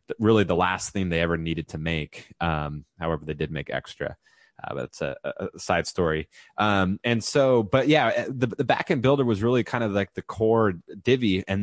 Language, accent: English, American